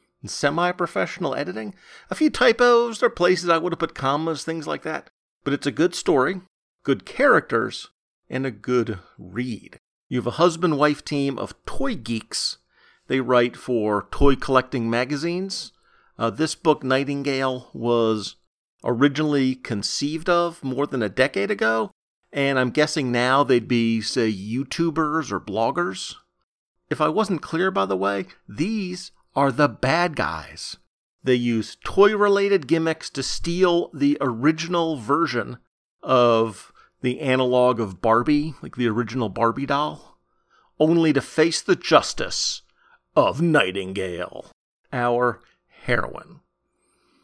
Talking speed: 135 wpm